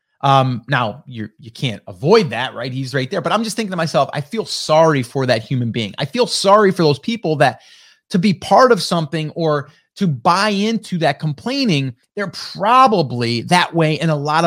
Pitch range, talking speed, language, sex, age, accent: 145-195 Hz, 210 wpm, English, male, 30-49, American